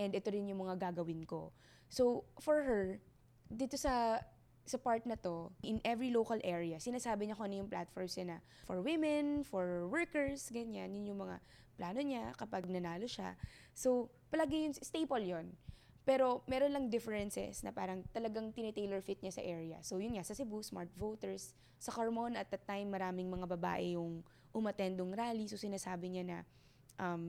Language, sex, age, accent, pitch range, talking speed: English, female, 20-39, Filipino, 180-235 Hz, 180 wpm